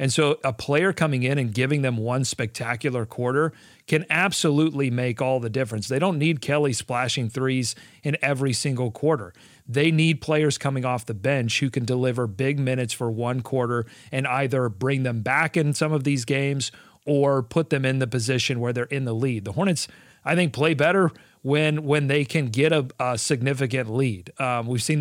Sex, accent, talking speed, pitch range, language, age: male, American, 195 wpm, 125-155 Hz, English, 40-59